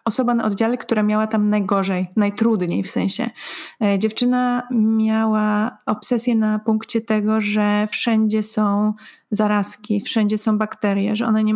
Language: Polish